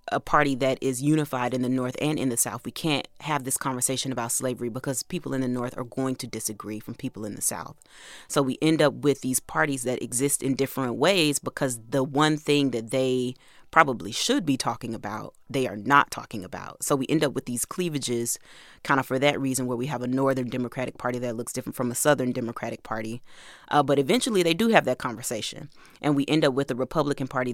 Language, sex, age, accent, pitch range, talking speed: English, female, 30-49, American, 125-140 Hz, 225 wpm